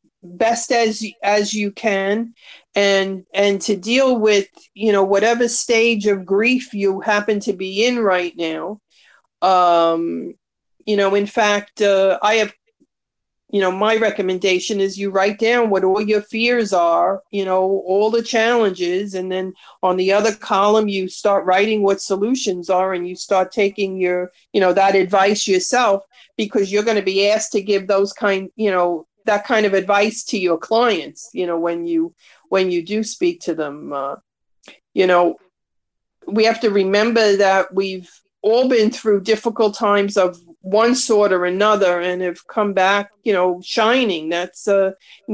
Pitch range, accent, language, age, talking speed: 185-215 Hz, American, English, 40-59, 170 wpm